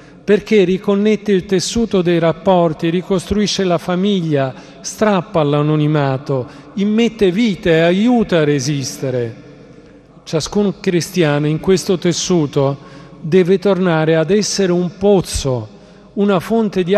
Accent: native